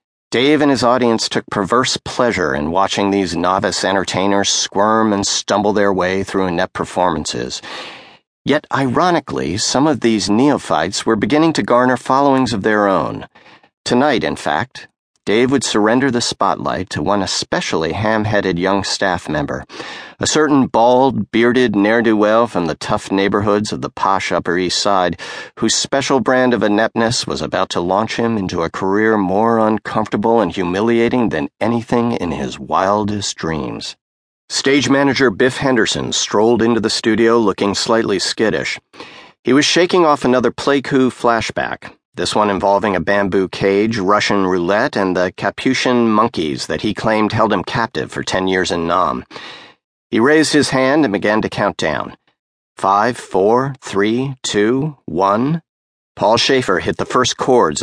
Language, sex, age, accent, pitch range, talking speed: English, male, 50-69, American, 95-125 Hz, 155 wpm